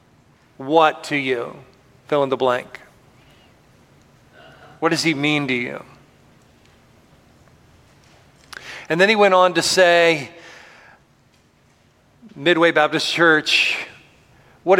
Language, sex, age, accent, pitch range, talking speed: English, male, 40-59, American, 135-160 Hz, 95 wpm